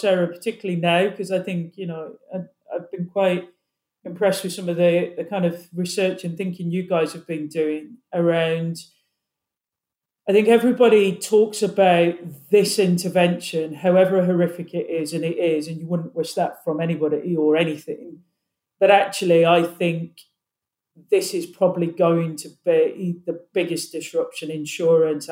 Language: English